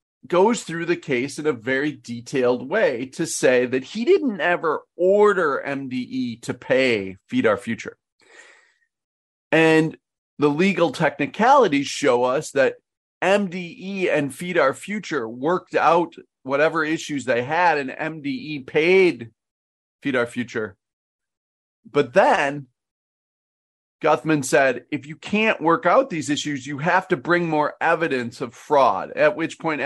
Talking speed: 135 wpm